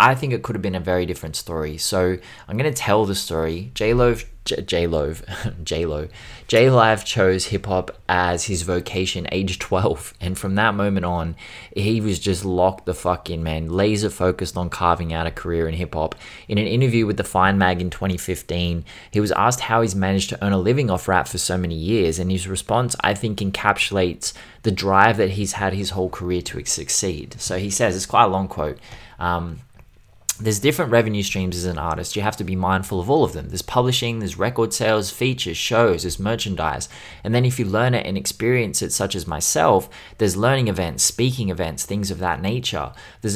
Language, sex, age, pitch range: English, male, 20-39, 90-110 Hz